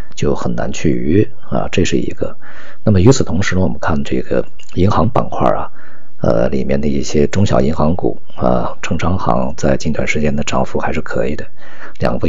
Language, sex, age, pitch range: Chinese, male, 50-69, 70-95 Hz